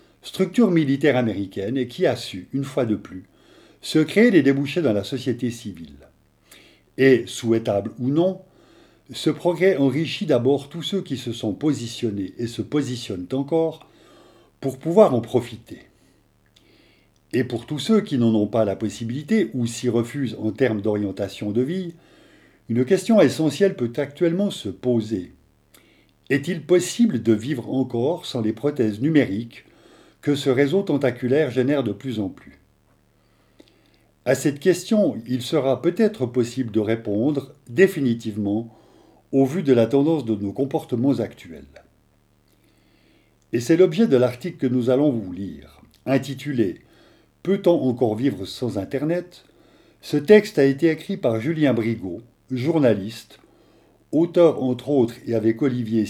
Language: French